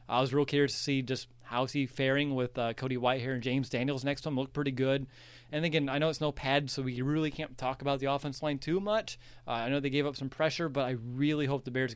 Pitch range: 125-145 Hz